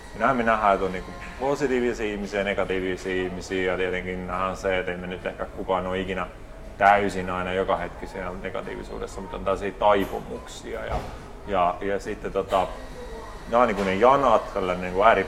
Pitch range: 95-110 Hz